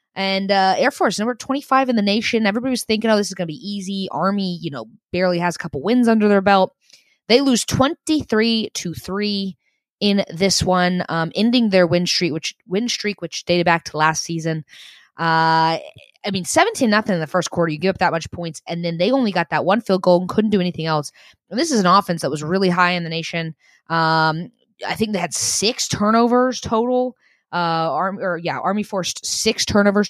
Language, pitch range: English, 165-210 Hz